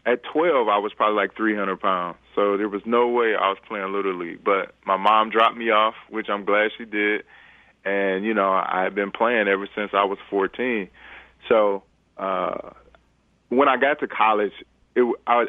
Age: 30-49